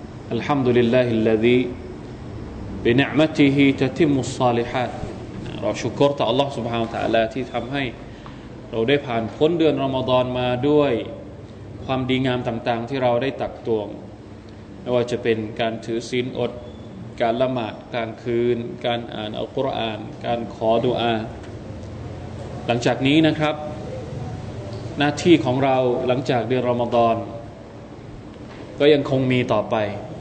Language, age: Thai, 20-39